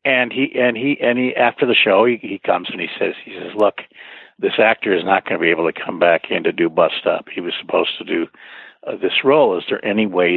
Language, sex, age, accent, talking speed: English, male, 60-79, American, 265 wpm